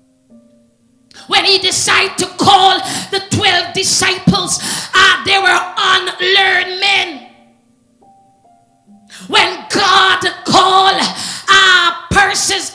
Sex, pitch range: female, 370-400 Hz